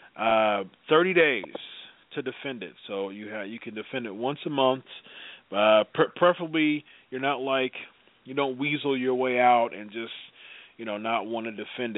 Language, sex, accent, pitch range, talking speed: English, male, American, 125-160 Hz, 180 wpm